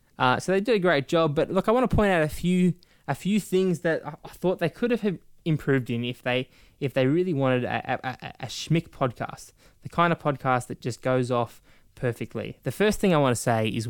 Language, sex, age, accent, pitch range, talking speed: English, male, 10-29, Australian, 125-165 Hz, 245 wpm